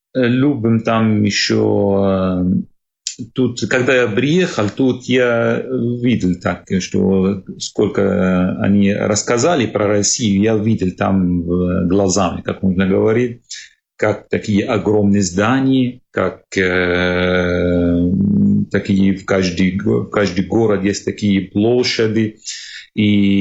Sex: male